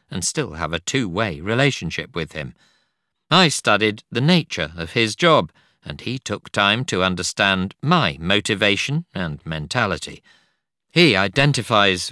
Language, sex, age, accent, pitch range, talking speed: English, male, 50-69, British, 80-115 Hz, 135 wpm